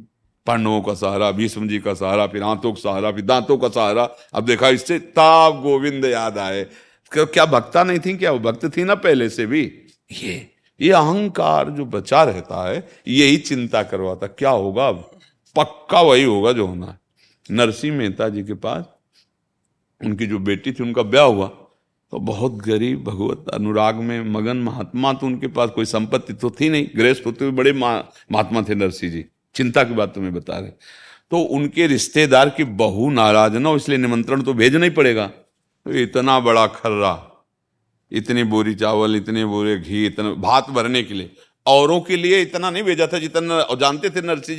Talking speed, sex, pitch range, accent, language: 175 wpm, male, 105-145 Hz, native, Hindi